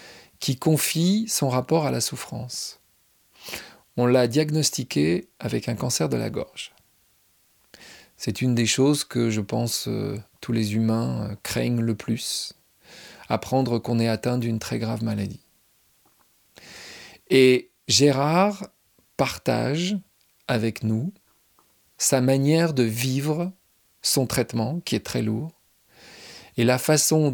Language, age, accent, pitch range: French, 40-59, French, 115-145 Hz